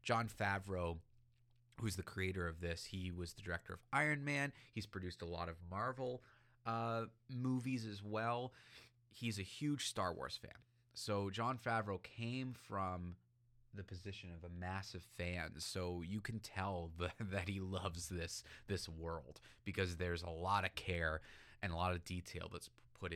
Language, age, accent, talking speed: English, 30-49, American, 170 wpm